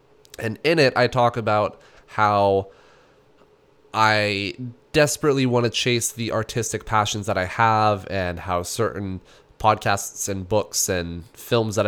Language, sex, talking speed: English, male, 135 wpm